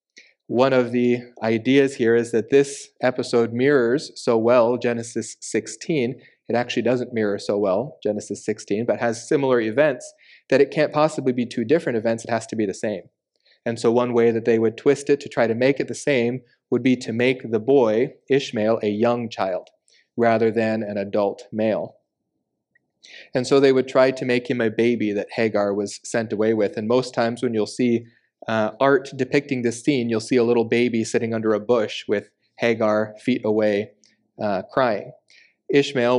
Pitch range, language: 110-130 Hz, English